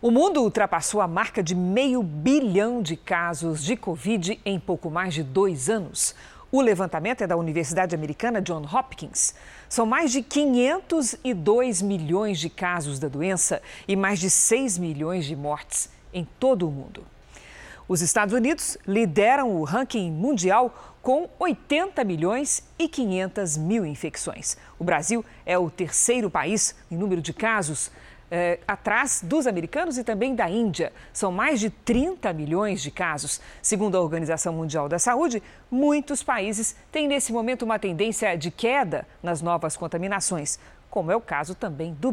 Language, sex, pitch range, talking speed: Portuguese, female, 170-245 Hz, 155 wpm